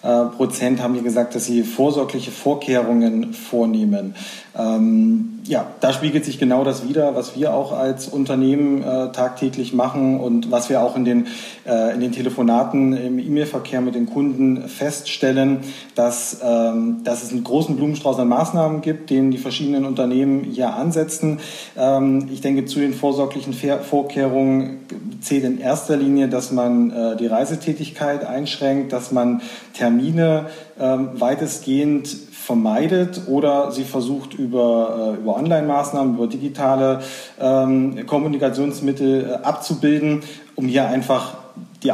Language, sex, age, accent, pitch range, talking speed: German, male, 40-59, German, 120-145 Hz, 140 wpm